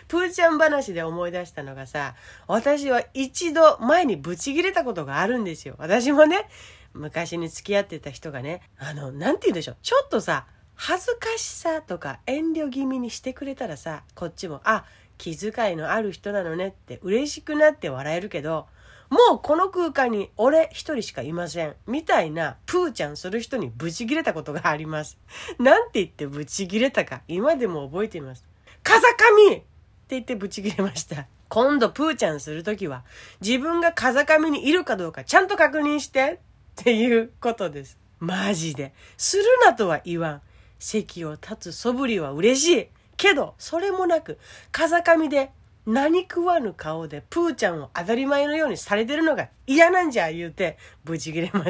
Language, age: Japanese, 40-59